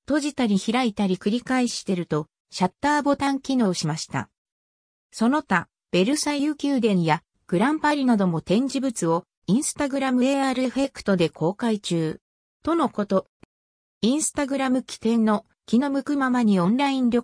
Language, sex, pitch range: Japanese, female, 180-265 Hz